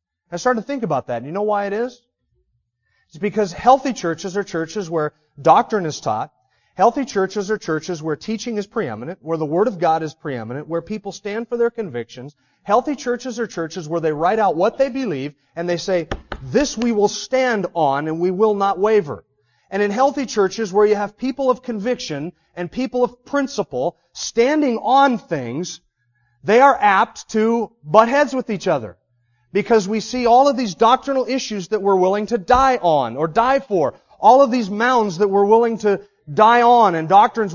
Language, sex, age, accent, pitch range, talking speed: English, male, 30-49, American, 150-225 Hz, 195 wpm